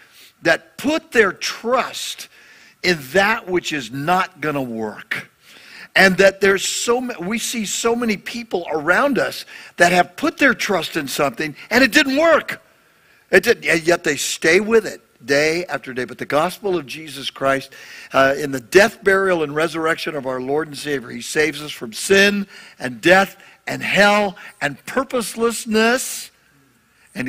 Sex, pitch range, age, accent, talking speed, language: male, 145-210 Hz, 60-79, American, 165 wpm, English